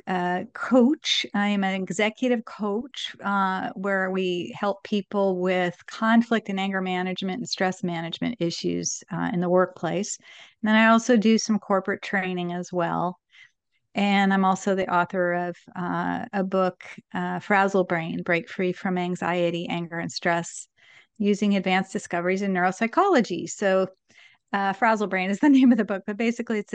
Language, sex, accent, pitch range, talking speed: English, female, American, 180-210 Hz, 160 wpm